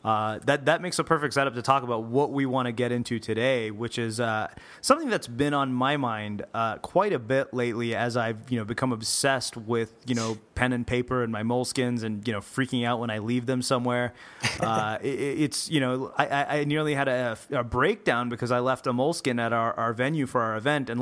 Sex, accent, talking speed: male, American, 230 wpm